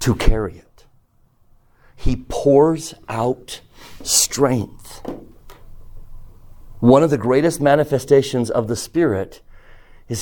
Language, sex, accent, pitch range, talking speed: English, male, American, 105-140 Hz, 95 wpm